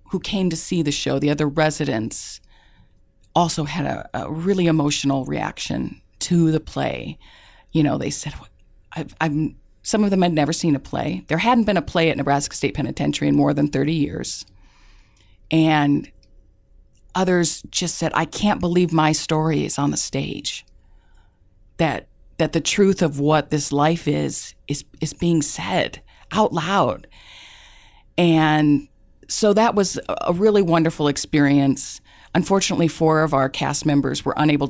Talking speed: 155 wpm